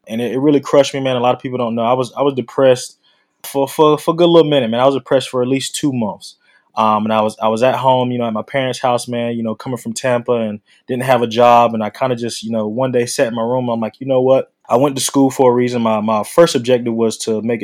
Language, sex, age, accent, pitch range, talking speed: English, male, 20-39, American, 110-125 Hz, 305 wpm